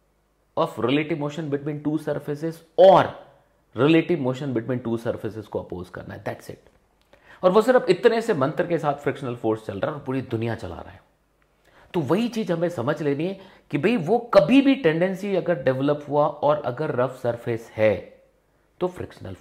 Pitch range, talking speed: 115-180 Hz, 185 wpm